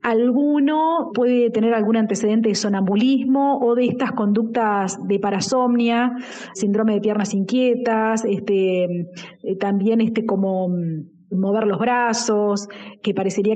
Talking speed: 115 wpm